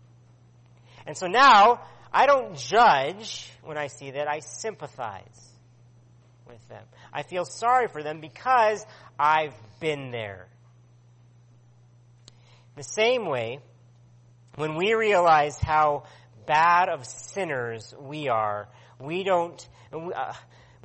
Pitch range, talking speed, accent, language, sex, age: 120-185 Hz, 110 wpm, American, English, male, 40-59